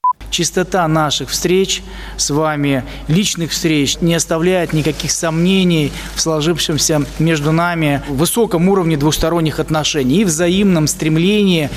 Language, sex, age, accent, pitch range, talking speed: Russian, male, 20-39, native, 165-270 Hz, 115 wpm